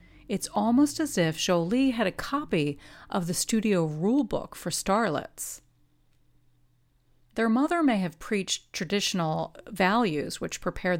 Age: 40-59